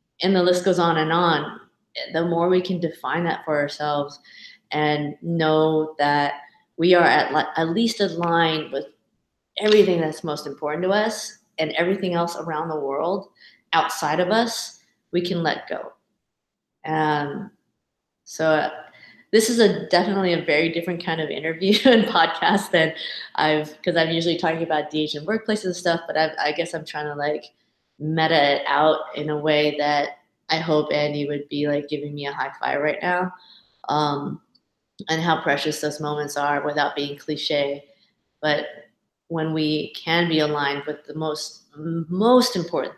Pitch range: 150-175 Hz